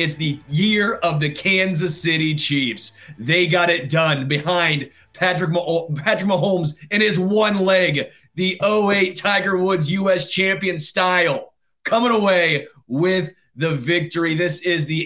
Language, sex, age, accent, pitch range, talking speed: English, male, 30-49, American, 150-180 Hz, 140 wpm